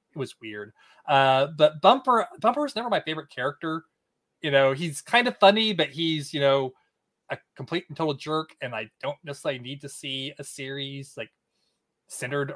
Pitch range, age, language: 130-180 Hz, 20-39, English